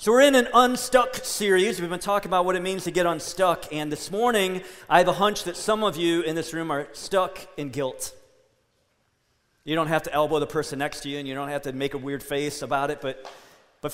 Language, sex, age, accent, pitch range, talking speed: English, male, 40-59, American, 160-245 Hz, 245 wpm